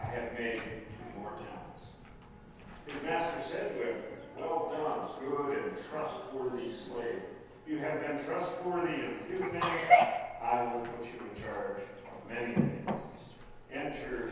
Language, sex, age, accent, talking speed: English, male, 50-69, American, 145 wpm